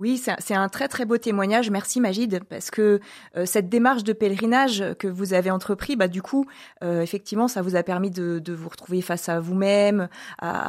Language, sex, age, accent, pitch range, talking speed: French, female, 30-49, French, 190-240 Hz, 210 wpm